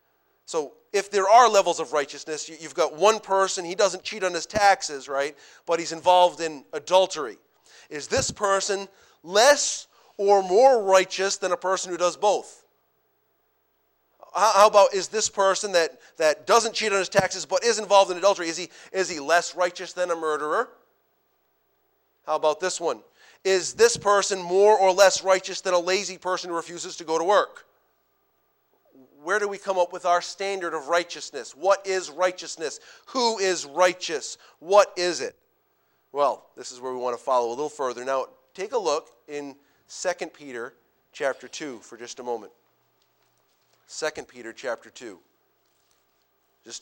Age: 40-59